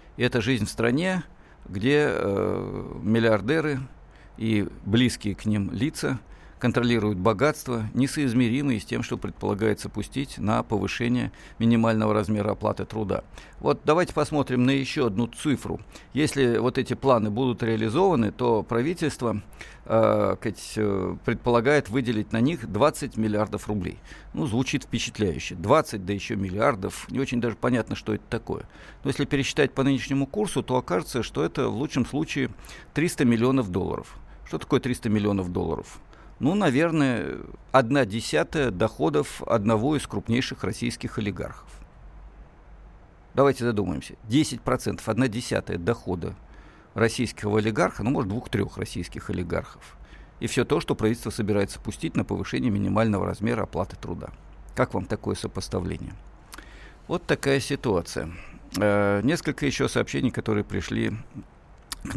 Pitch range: 105-130 Hz